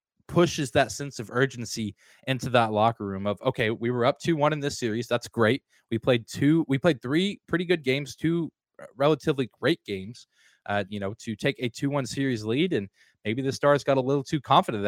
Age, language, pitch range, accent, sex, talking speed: 20-39, English, 115-140 Hz, American, male, 210 wpm